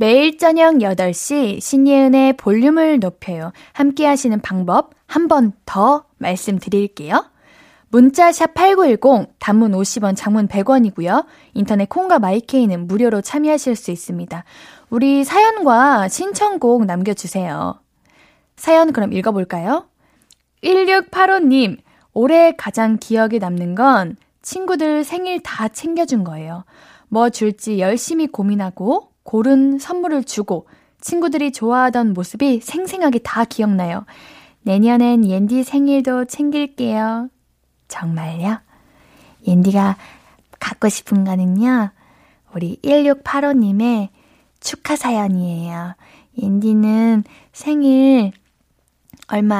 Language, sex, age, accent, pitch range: Korean, female, 10-29, native, 205-290 Hz